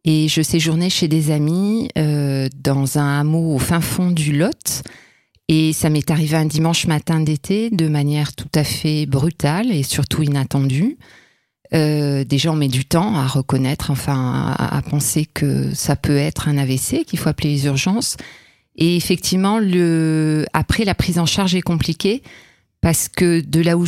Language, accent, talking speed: French, French, 175 wpm